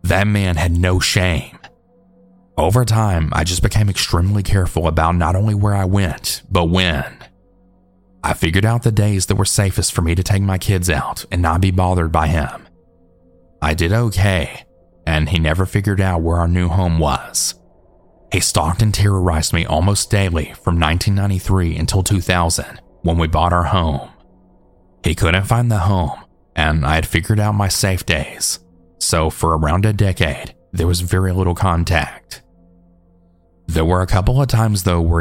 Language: English